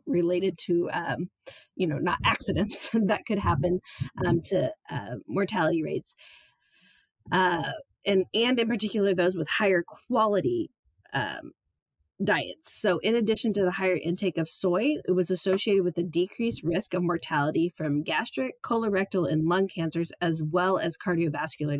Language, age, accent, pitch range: English, 20-39, American, 165-200 Hz